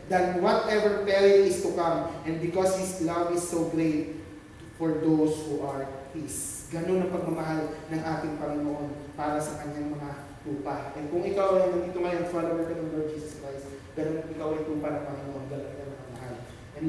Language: English